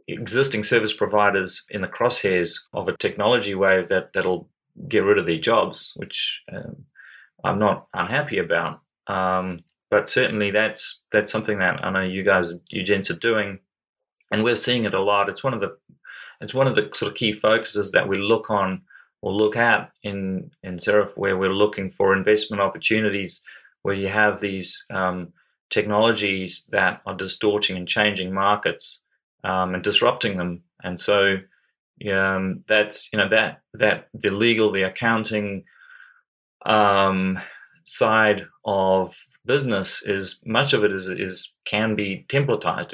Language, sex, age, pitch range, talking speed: English, male, 30-49, 95-105 Hz, 160 wpm